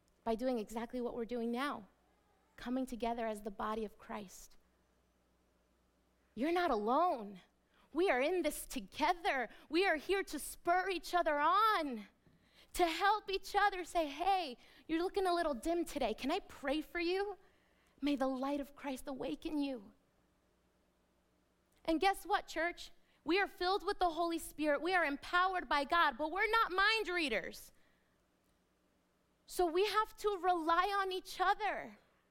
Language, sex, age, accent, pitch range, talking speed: English, female, 30-49, American, 235-345 Hz, 155 wpm